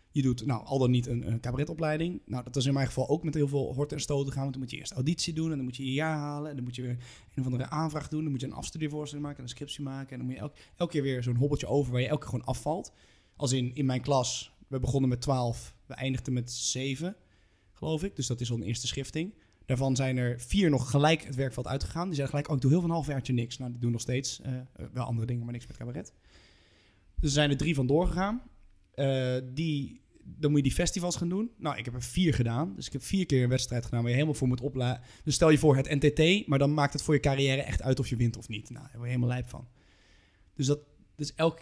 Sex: male